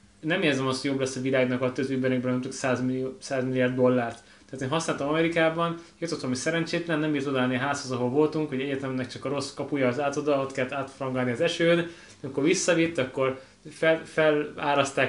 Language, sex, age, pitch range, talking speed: Hungarian, male, 20-39, 130-150 Hz, 185 wpm